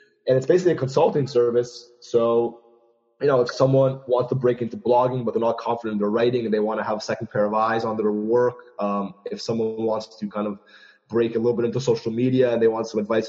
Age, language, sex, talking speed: 20-39, English, male, 250 wpm